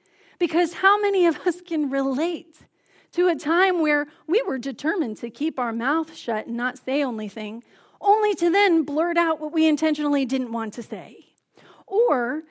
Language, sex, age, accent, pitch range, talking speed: English, female, 40-59, American, 250-335 Hz, 175 wpm